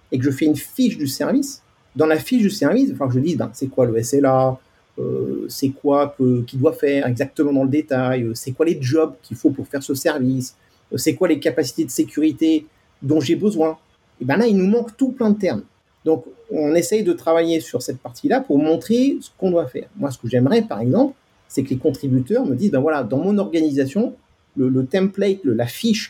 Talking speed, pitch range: 230 wpm, 130-205 Hz